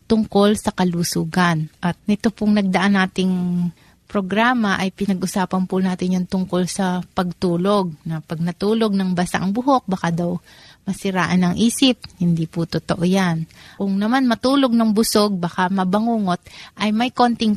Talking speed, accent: 145 wpm, native